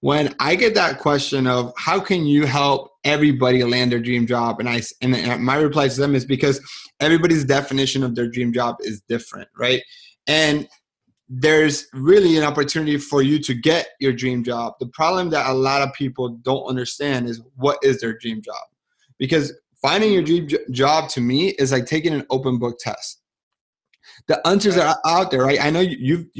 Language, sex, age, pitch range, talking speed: English, male, 30-49, 130-160 Hz, 190 wpm